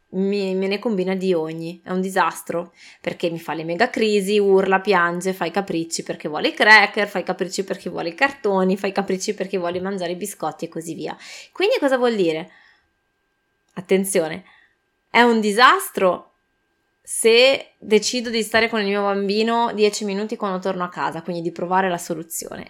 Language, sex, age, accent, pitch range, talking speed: Italian, female, 20-39, native, 175-230 Hz, 180 wpm